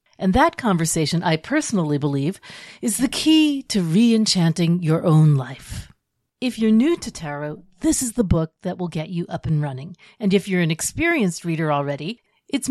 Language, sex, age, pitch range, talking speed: English, female, 40-59, 160-230 Hz, 180 wpm